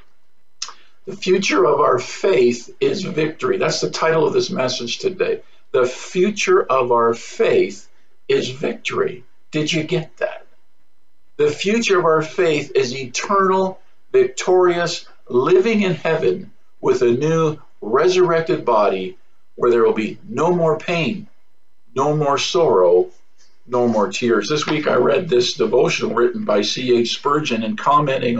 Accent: American